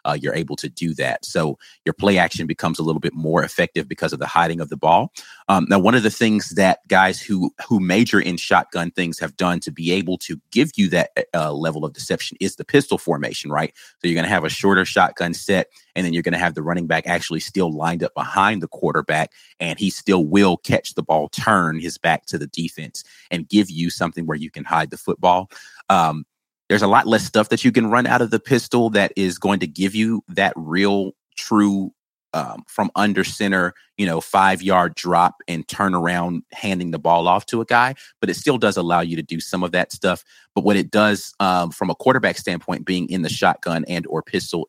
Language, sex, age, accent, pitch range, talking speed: English, male, 30-49, American, 85-100 Hz, 230 wpm